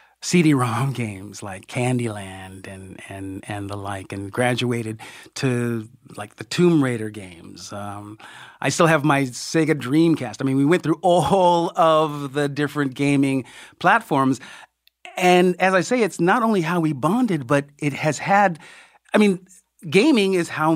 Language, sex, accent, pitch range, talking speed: English, male, American, 115-165 Hz, 155 wpm